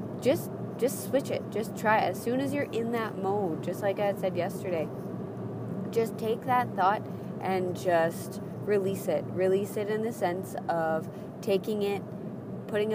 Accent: American